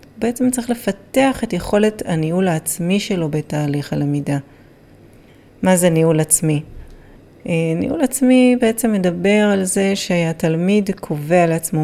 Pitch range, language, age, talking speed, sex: 155-215 Hz, Hebrew, 30-49, 115 wpm, female